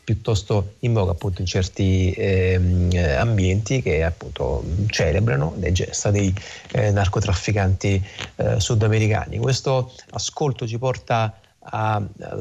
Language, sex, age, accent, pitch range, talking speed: Italian, male, 30-49, native, 100-115 Hz, 110 wpm